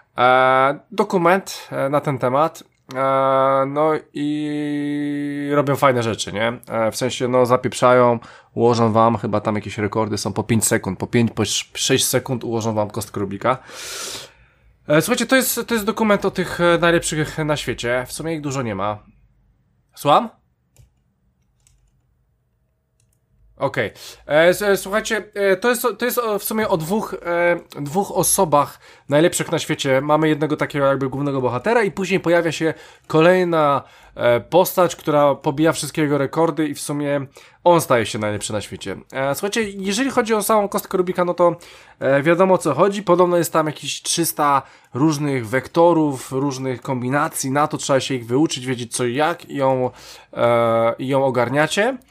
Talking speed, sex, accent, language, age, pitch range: 150 wpm, male, native, Polish, 20-39, 125-175 Hz